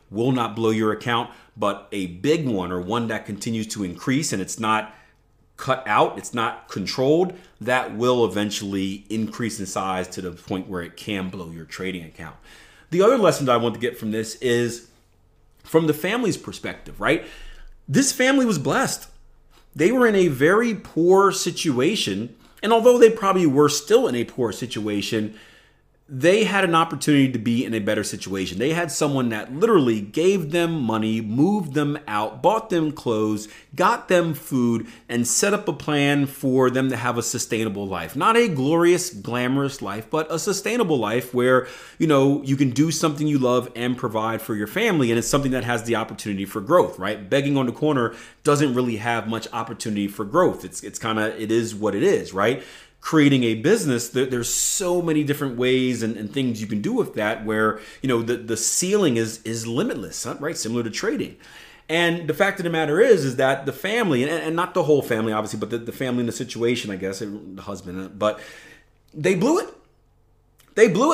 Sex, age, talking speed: male, 30-49, 195 wpm